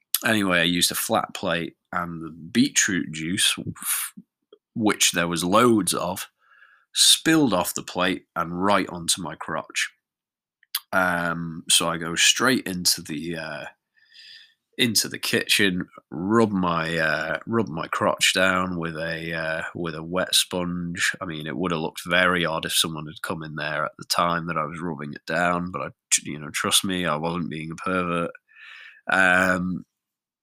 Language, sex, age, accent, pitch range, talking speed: English, male, 20-39, British, 80-100 Hz, 165 wpm